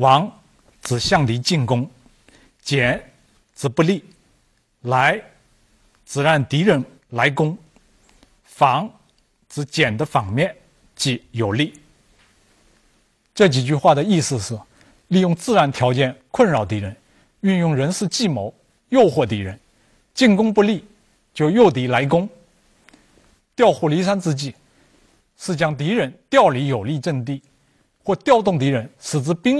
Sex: male